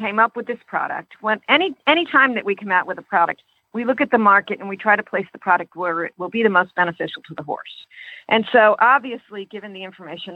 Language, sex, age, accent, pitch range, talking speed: English, female, 50-69, American, 175-215 Hz, 250 wpm